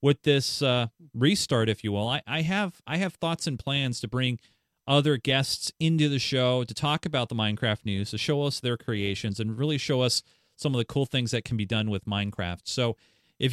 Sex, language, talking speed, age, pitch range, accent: male, English, 220 wpm, 40-59, 115-145 Hz, American